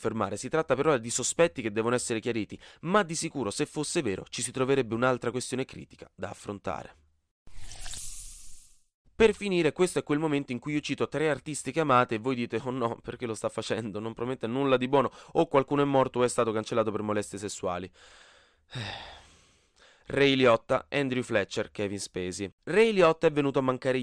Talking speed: 185 wpm